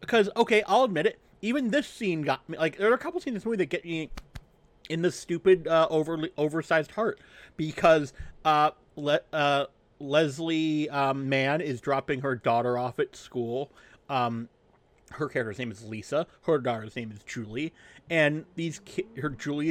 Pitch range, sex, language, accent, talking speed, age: 130-165 Hz, male, English, American, 180 wpm, 30-49